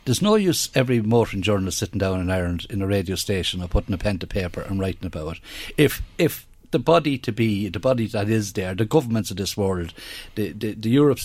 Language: English